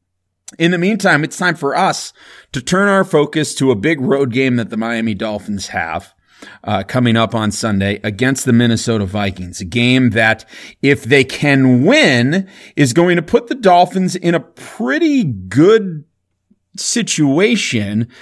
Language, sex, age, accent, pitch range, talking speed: English, male, 30-49, American, 115-150 Hz, 160 wpm